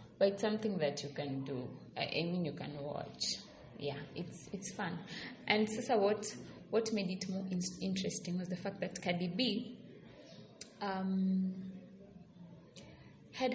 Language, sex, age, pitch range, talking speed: English, female, 20-39, 170-200 Hz, 145 wpm